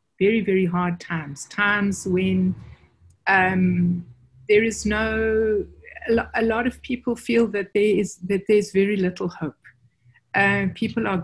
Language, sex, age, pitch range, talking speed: English, female, 60-79, 175-210 Hz, 140 wpm